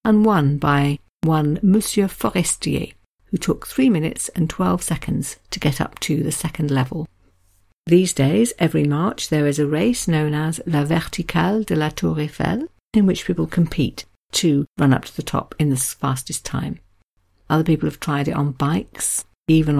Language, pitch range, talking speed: English, 140-180 Hz, 175 wpm